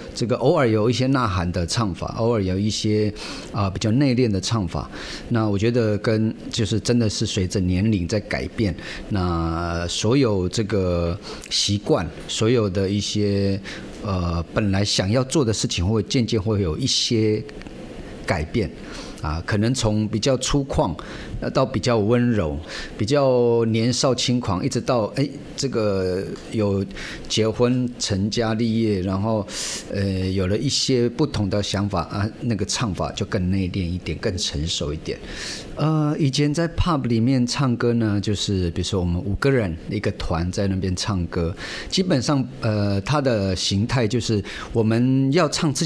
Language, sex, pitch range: Chinese, male, 95-125 Hz